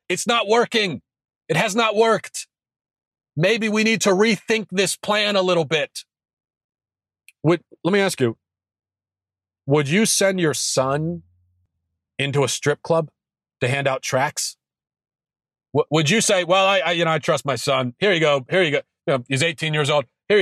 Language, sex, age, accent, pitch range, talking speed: English, male, 40-59, American, 120-170 Hz, 175 wpm